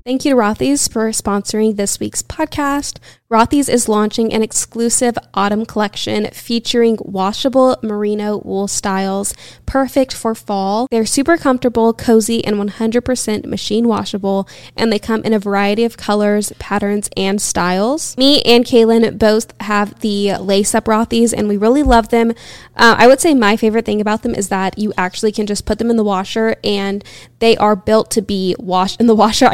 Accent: American